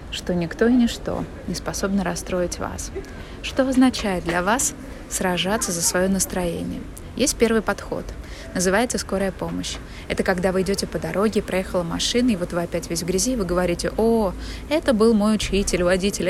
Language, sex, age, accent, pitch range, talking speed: Russian, female, 20-39, native, 180-225 Hz, 170 wpm